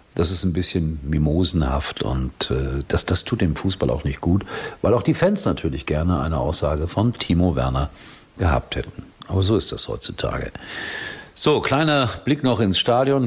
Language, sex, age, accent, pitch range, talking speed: German, male, 50-69, German, 75-100 Hz, 170 wpm